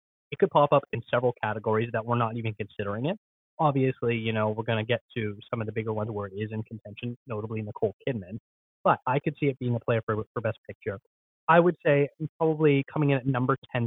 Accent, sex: American, male